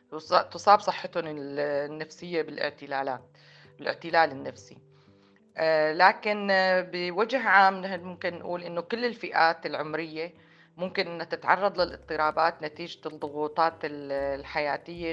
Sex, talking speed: female, 85 wpm